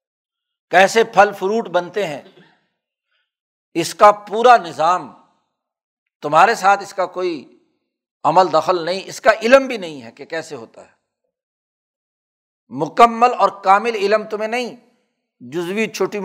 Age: 60-79